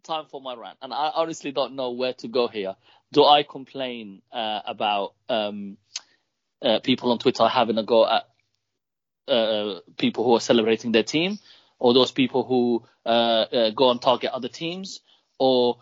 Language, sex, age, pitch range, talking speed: English, male, 30-49, 120-155 Hz, 175 wpm